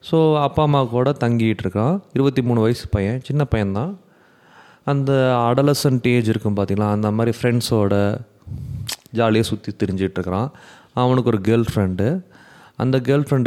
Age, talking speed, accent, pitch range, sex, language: 30-49, 120 wpm, Indian, 100-130 Hz, male, English